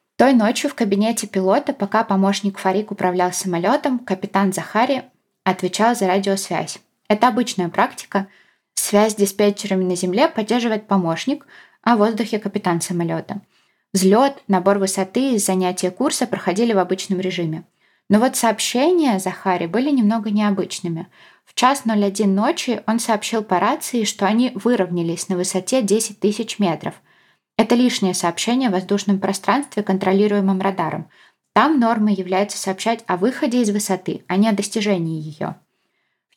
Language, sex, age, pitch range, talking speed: Russian, female, 20-39, 190-225 Hz, 140 wpm